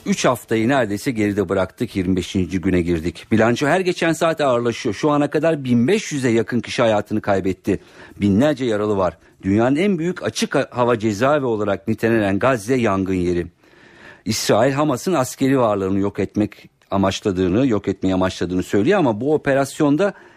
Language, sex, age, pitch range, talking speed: Turkish, male, 50-69, 105-150 Hz, 145 wpm